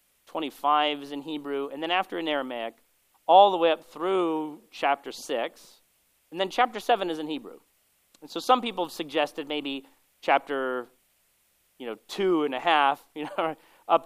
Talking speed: 175 wpm